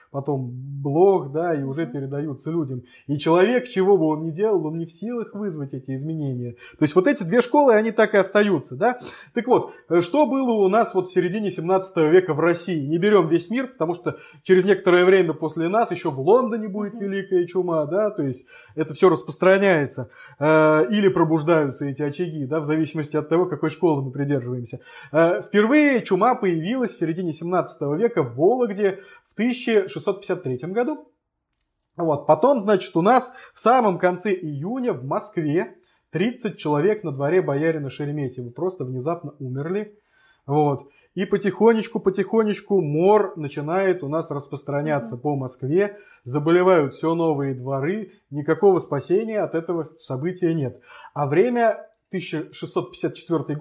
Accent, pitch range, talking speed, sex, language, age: native, 150-200 Hz, 155 wpm, male, Russian, 20-39